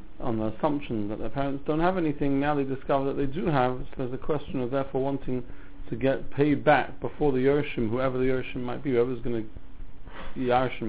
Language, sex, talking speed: English, male, 220 wpm